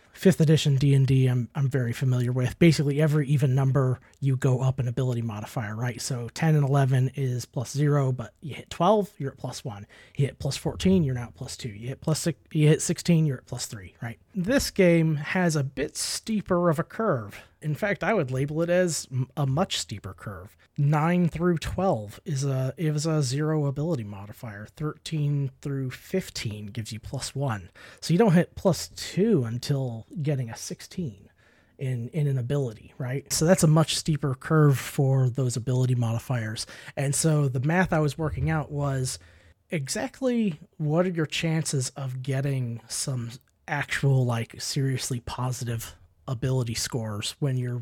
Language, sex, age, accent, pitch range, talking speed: English, male, 30-49, American, 125-160 Hz, 180 wpm